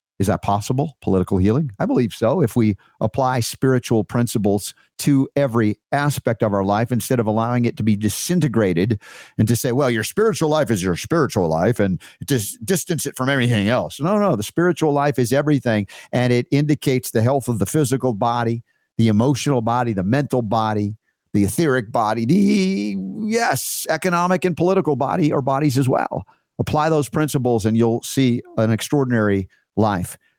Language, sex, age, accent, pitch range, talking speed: English, male, 50-69, American, 115-145 Hz, 170 wpm